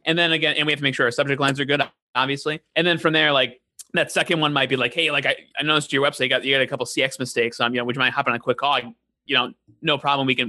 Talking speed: 325 wpm